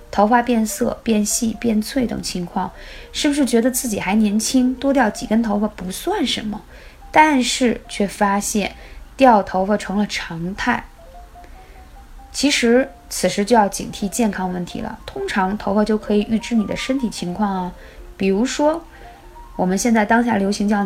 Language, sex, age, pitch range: Chinese, female, 20-39, 200-255 Hz